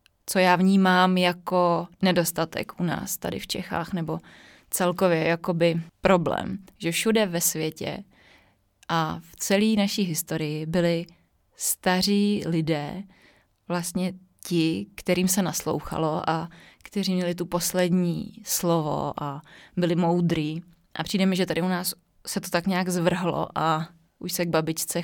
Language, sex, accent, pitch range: Czech, female, native, 170-195 Hz